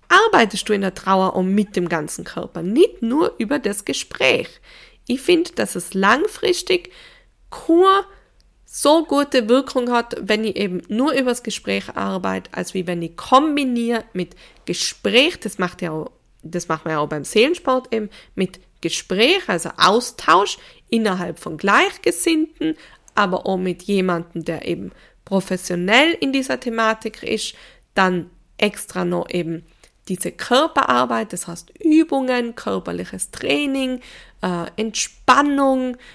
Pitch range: 175-250 Hz